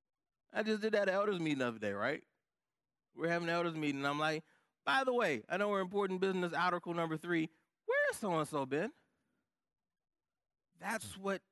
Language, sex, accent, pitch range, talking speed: English, male, American, 115-165 Hz, 180 wpm